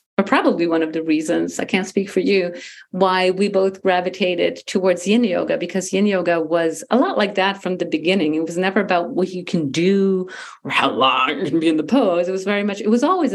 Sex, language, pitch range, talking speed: female, English, 175-225 Hz, 240 wpm